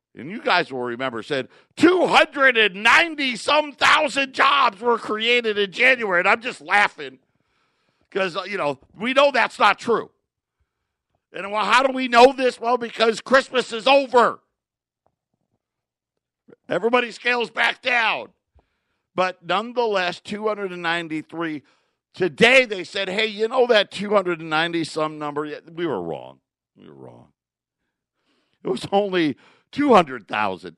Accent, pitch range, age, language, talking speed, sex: American, 165-235 Hz, 50-69, English, 120 wpm, male